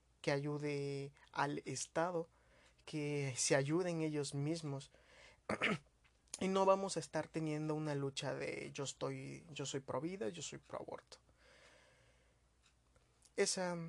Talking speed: 125 wpm